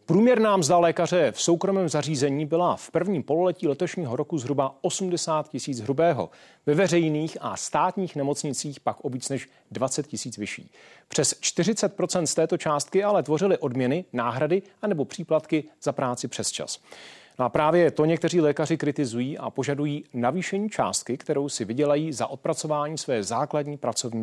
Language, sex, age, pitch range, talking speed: Czech, male, 40-59, 135-170 Hz, 150 wpm